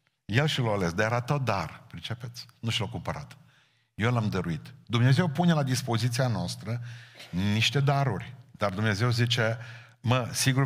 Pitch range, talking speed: 110-140 Hz, 160 wpm